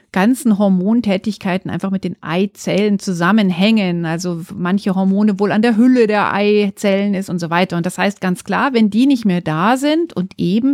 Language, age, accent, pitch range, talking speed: German, 40-59, German, 195-235 Hz, 185 wpm